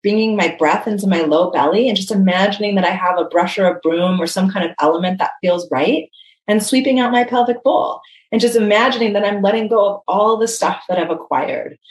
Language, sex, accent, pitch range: English, female, American, 185-240 Hz